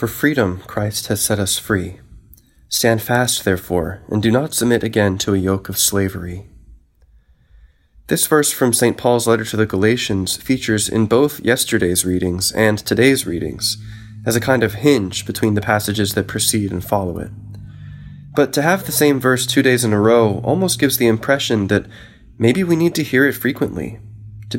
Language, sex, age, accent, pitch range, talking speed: English, male, 20-39, American, 100-120 Hz, 180 wpm